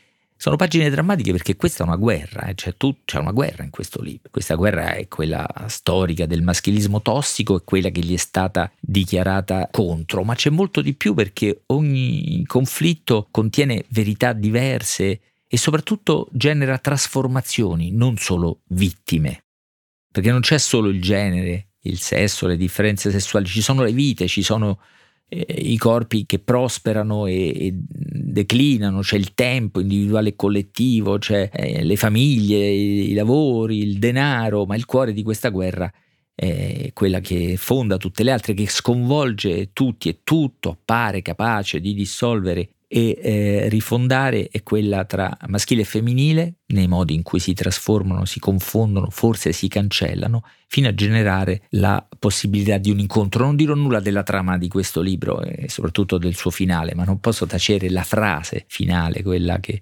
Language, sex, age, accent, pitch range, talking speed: Italian, male, 50-69, native, 95-120 Hz, 160 wpm